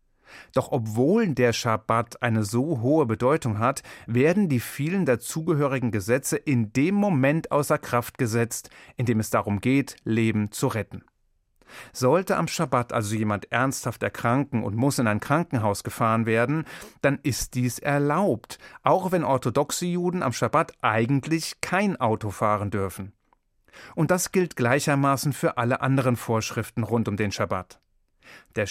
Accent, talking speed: German, 145 wpm